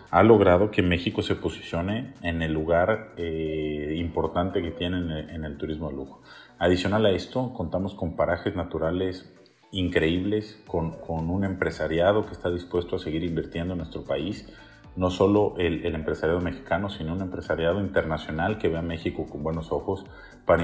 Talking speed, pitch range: 170 wpm, 85-100 Hz